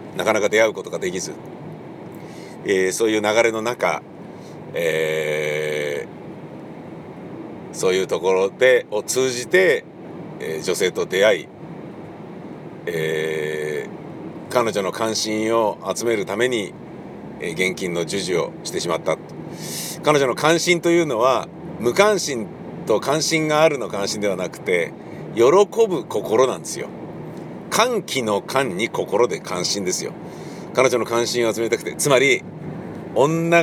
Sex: male